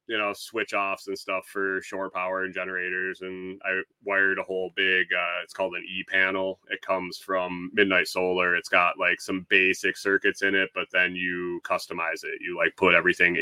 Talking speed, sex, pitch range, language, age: 195 wpm, male, 90-110 Hz, English, 30-49